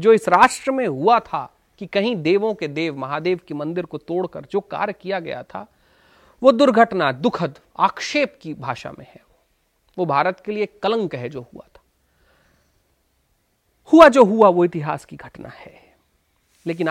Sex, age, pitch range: male, 40-59, 140-220 Hz